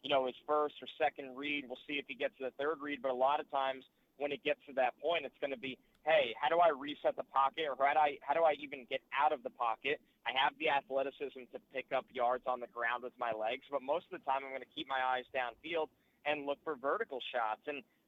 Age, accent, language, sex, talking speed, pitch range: 30-49, American, English, male, 270 wpm, 130-150 Hz